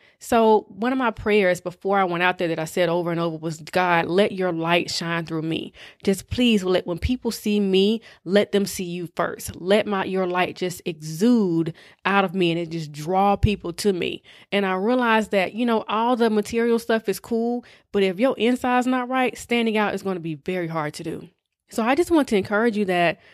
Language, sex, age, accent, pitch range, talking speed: English, female, 20-39, American, 180-235 Hz, 225 wpm